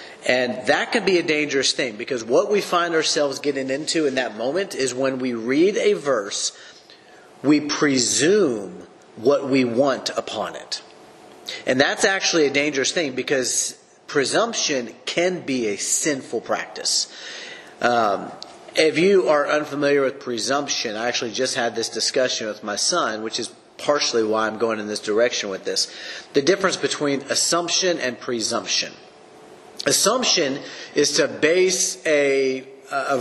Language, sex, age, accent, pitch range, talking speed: English, male, 30-49, American, 130-180 Hz, 150 wpm